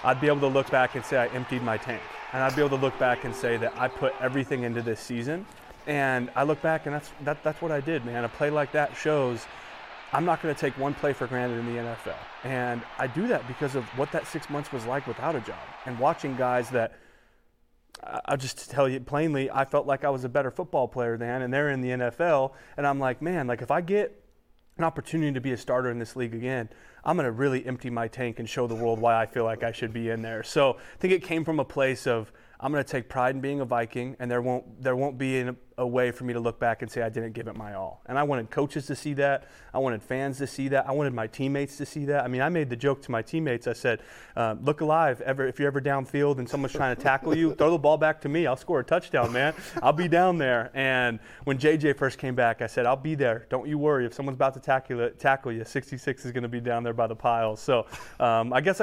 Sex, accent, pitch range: male, American, 120-145 Hz